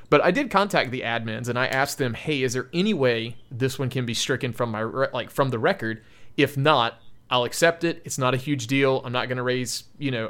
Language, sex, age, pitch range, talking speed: English, male, 30-49, 115-145 Hz, 250 wpm